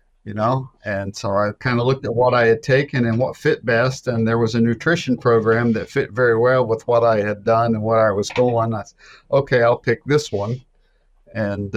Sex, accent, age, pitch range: male, American, 50-69, 105-125 Hz